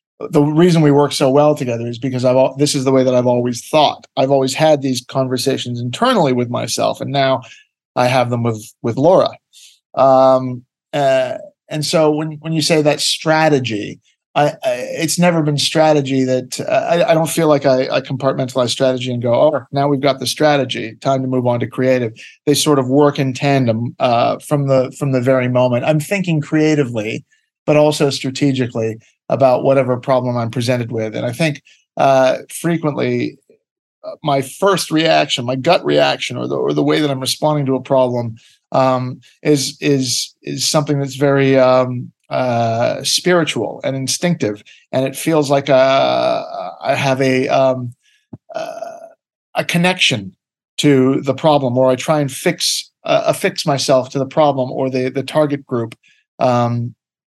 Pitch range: 130-155 Hz